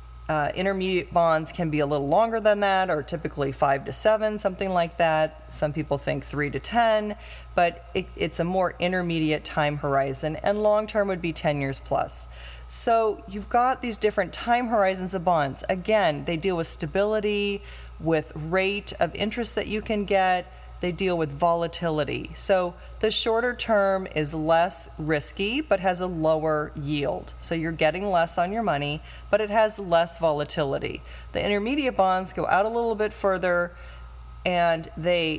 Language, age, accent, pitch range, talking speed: English, 30-49, American, 155-205 Hz, 170 wpm